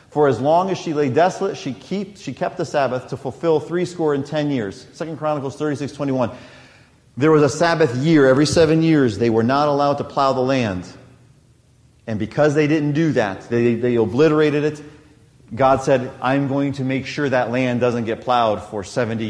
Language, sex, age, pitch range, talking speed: English, male, 40-59, 130-160 Hz, 195 wpm